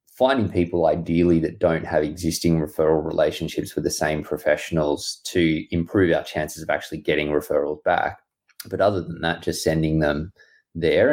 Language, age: English, 20-39